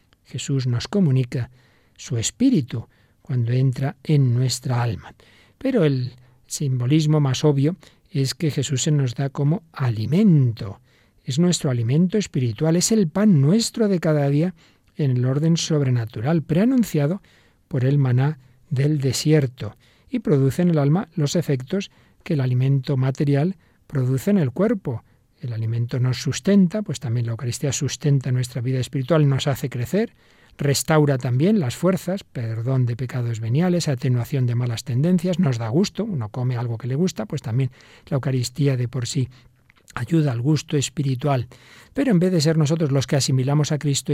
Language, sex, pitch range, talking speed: Spanish, male, 125-160 Hz, 160 wpm